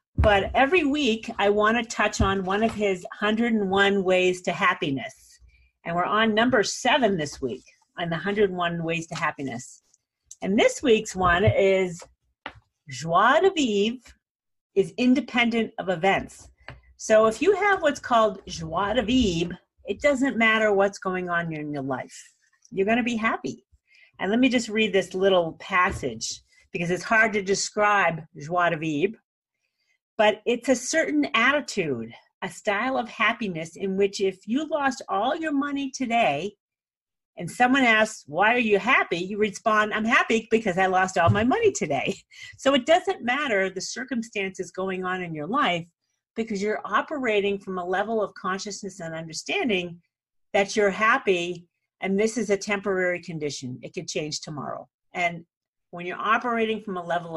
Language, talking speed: English, 165 wpm